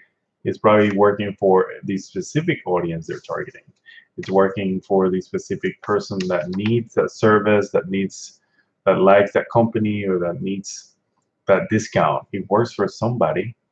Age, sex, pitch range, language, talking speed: 20-39, male, 95-110 Hz, English, 150 wpm